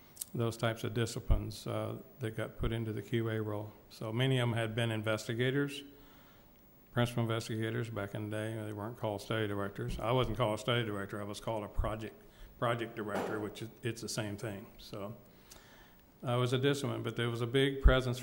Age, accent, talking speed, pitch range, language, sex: 60-79, American, 200 wpm, 105-115 Hz, English, male